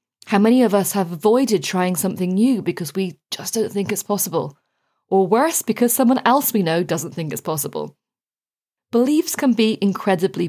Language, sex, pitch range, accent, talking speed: English, female, 175-230 Hz, British, 175 wpm